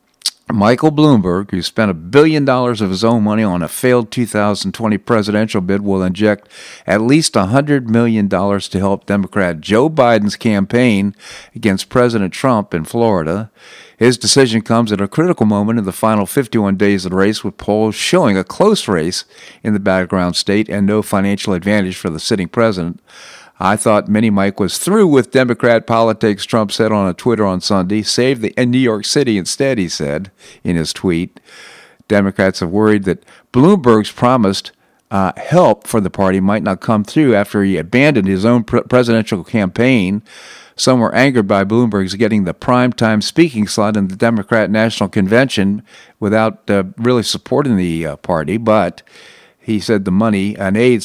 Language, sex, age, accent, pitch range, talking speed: English, male, 50-69, American, 95-115 Hz, 175 wpm